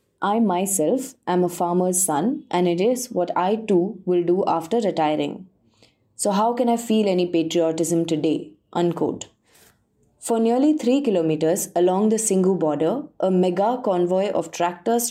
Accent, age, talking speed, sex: Indian, 20-39, 150 wpm, female